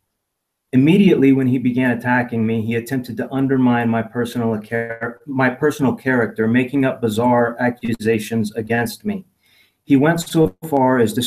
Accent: American